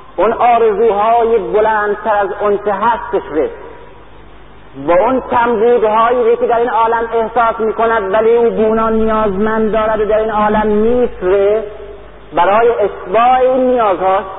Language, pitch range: Persian, 195-235 Hz